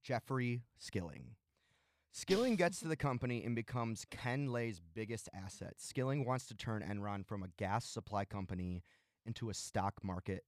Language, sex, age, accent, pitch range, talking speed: English, male, 20-39, American, 95-120 Hz, 155 wpm